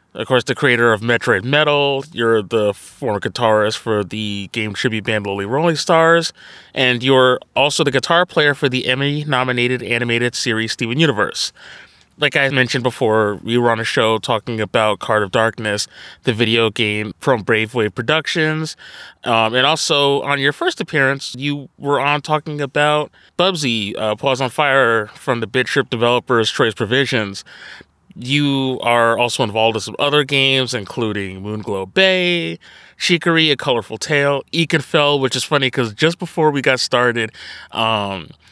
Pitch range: 110-140 Hz